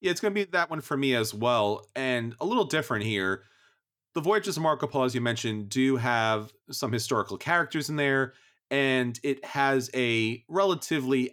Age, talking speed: 30-49, 185 wpm